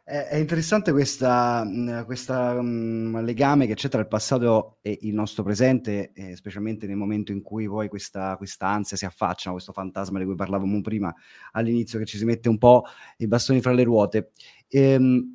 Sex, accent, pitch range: male, native, 100-125 Hz